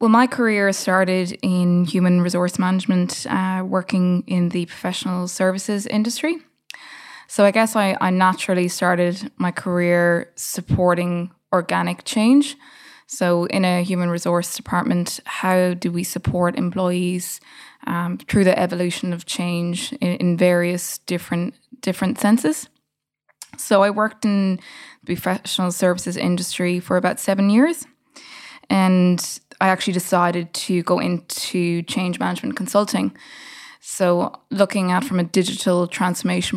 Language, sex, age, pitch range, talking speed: English, female, 20-39, 180-205 Hz, 130 wpm